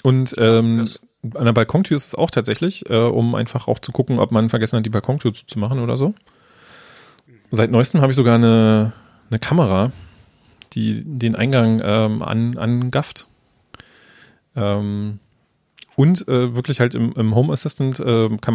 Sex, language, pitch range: male, German, 110-130 Hz